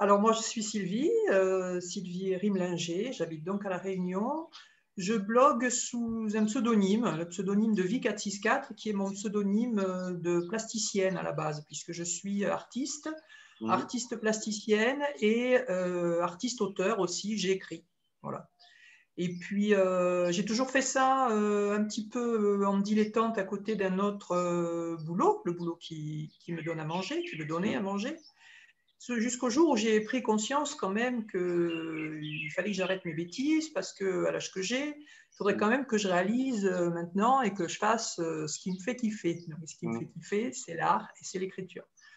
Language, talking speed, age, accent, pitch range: French, 175 wpm, 50-69, French, 180-245 Hz